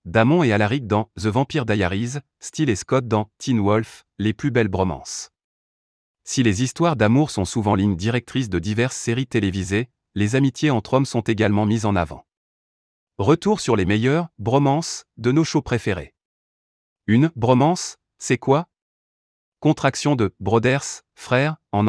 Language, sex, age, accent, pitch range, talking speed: French, male, 30-49, French, 105-135 Hz, 155 wpm